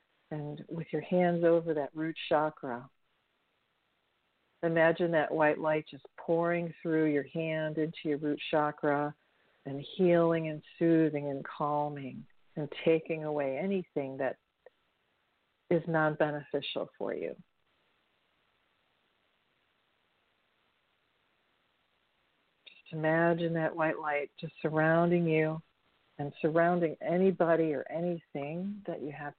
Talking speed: 105 wpm